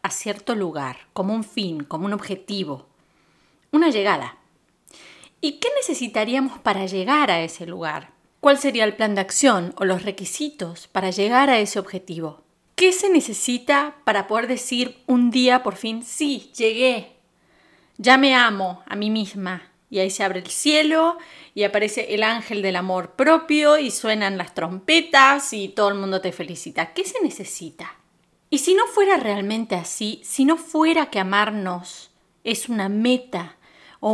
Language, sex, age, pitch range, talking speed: Spanish, female, 30-49, 190-270 Hz, 160 wpm